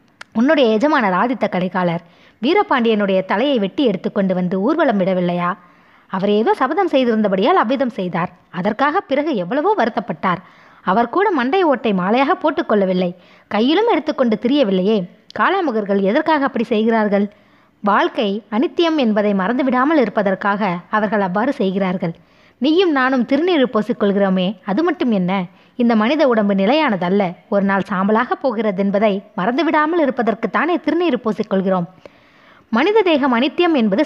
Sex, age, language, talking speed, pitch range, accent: female, 20-39, Tamil, 115 wpm, 195-280 Hz, native